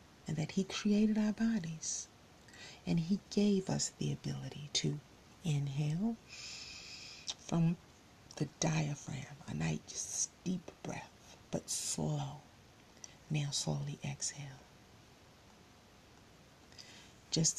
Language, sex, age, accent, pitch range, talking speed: English, female, 40-59, American, 145-185 Hz, 90 wpm